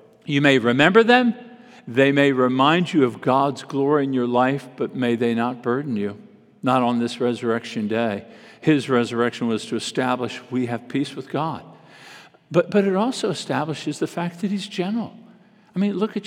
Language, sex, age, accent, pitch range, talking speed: English, male, 50-69, American, 130-215 Hz, 180 wpm